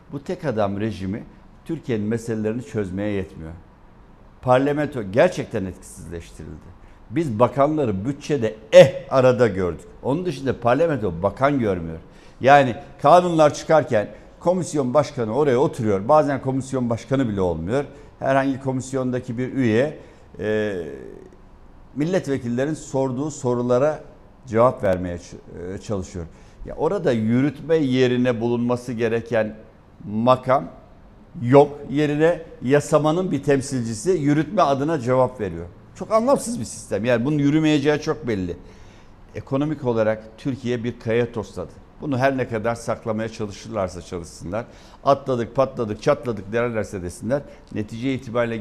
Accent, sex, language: native, male, Turkish